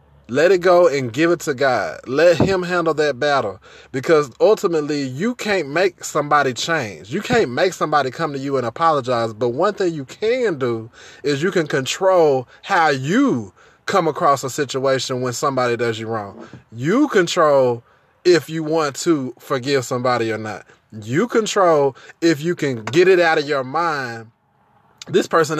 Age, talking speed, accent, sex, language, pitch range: 20-39, 170 wpm, American, male, English, 135-180 Hz